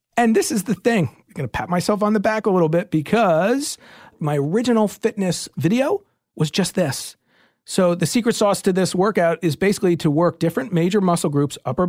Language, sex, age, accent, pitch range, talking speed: English, male, 40-59, American, 155-210 Hz, 200 wpm